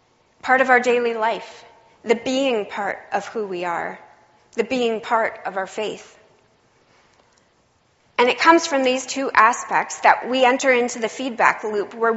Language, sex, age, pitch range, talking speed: English, female, 30-49, 210-260 Hz, 165 wpm